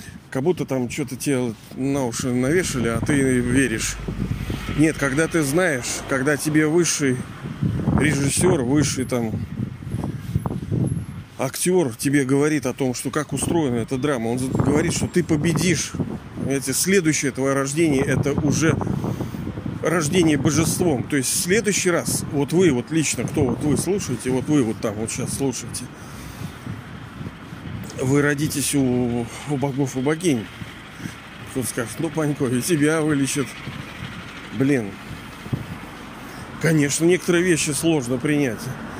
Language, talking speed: Russian, 130 wpm